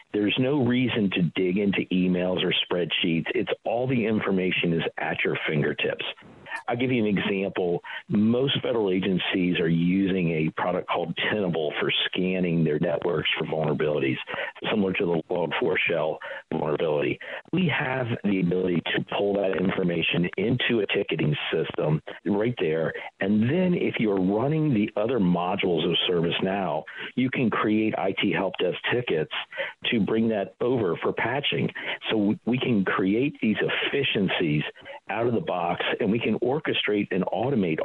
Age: 50-69